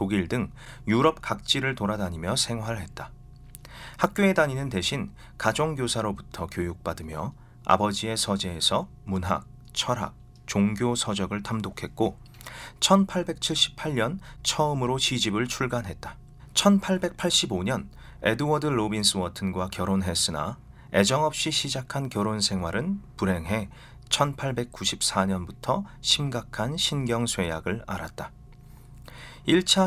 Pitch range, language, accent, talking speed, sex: 100-140 Hz, English, Korean, 75 wpm, male